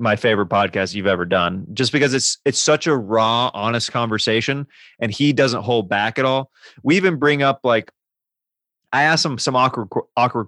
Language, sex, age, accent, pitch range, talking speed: English, male, 30-49, American, 105-125 Hz, 190 wpm